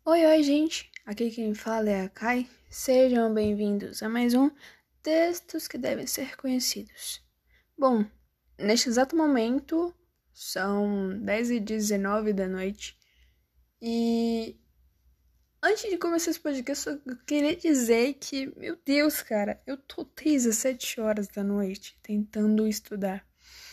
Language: Portuguese